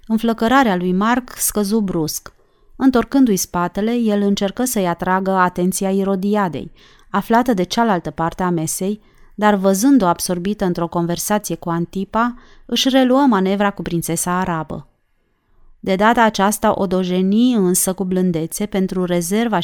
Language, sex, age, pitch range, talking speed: Romanian, female, 30-49, 175-220 Hz, 125 wpm